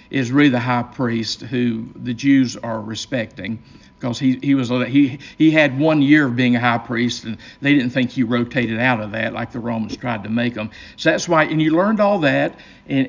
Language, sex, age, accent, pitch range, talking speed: English, male, 50-69, American, 120-145 Hz, 225 wpm